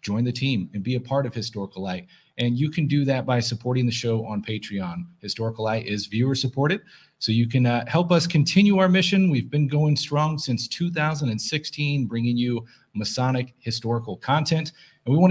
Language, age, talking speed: English, 40-59, 190 wpm